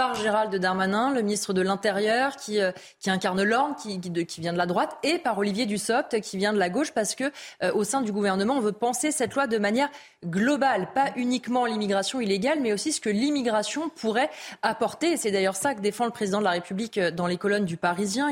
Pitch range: 200-260 Hz